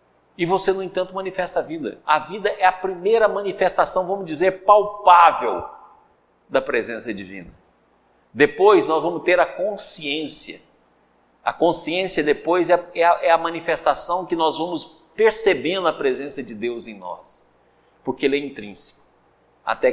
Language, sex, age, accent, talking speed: Portuguese, male, 60-79, Brazilian, 140 wpm